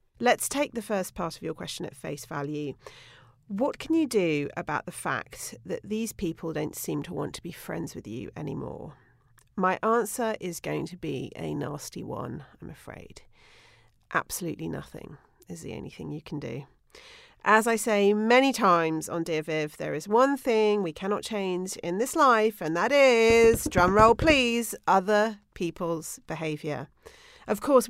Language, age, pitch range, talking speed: English, 40-59, 165-225 Hz, 170 wpm